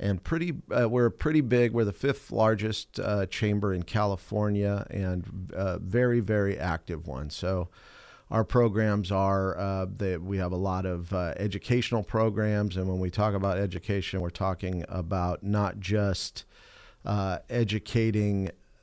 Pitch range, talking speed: 90-110 Hz, 150 wpm